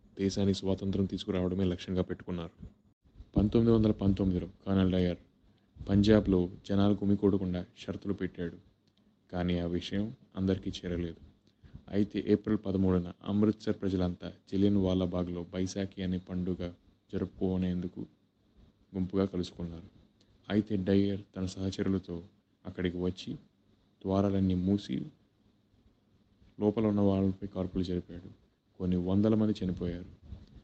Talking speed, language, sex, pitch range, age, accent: 100 wpm, Telugu, male, 90-100 Hz, 20-39, native